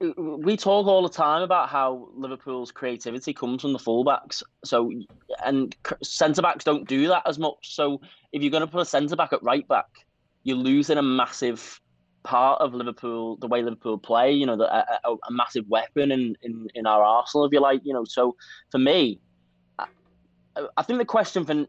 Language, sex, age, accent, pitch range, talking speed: English, male, 20-39, British, 110-140 Hz, 195 wpm